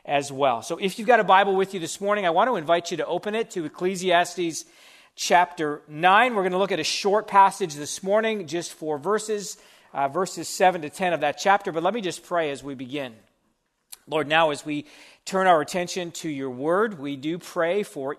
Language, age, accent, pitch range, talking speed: English, 40-59, American, 140-190 Hz, 220 wpm